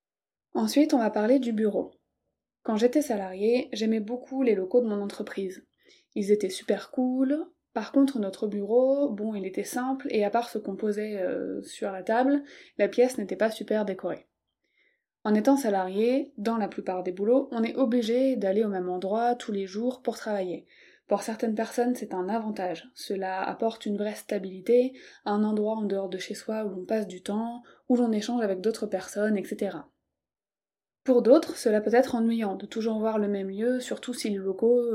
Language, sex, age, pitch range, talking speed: French, female, 20-39, 200-245 Hz, 190 wpm